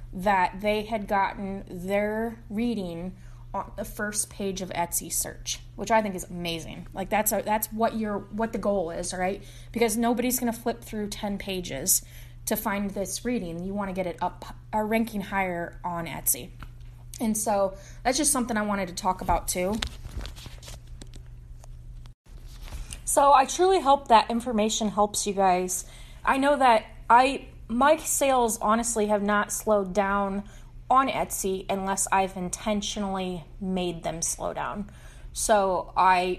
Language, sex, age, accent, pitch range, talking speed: English, female, 20-39, American, 175-220 Hz, 155 wpm